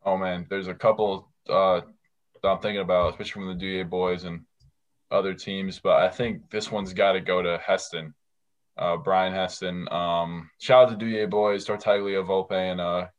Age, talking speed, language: 20-39, 185 wpm, English